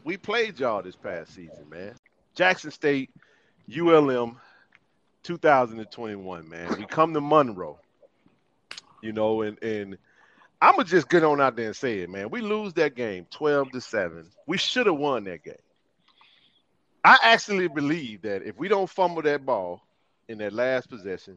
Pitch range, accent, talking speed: 100-145 Hz, American, 170 wpm